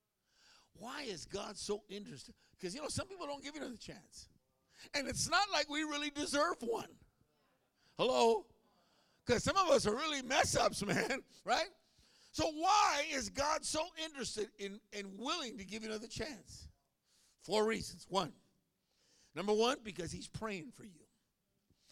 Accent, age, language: American, 50-69, English